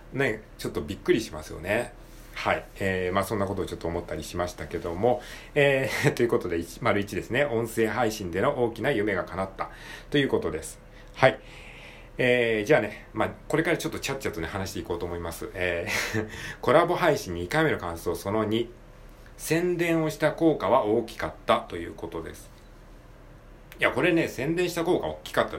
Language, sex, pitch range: Japanese, male, 90-145 Hz